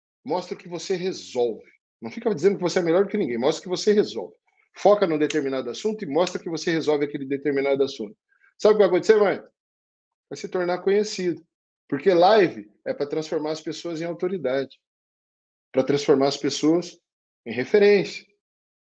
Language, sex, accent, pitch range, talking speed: Portuguese, male, Brazilian, 170-280 Hz, 180 wpm